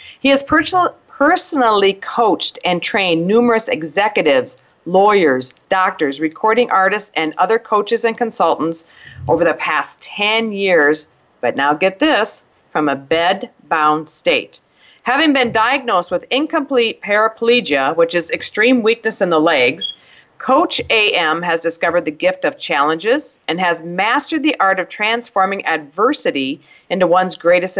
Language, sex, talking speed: English, female, 135 wpm